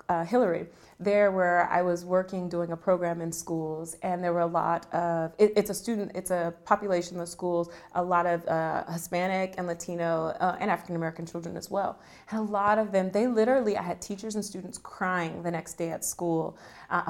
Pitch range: 180-230 Hz